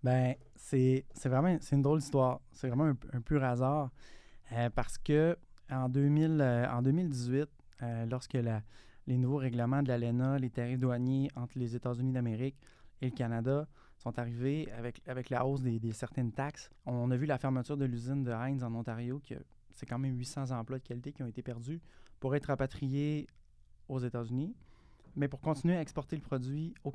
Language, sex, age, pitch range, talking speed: French, male, 20-39, 120-145 Hz, 195 wpm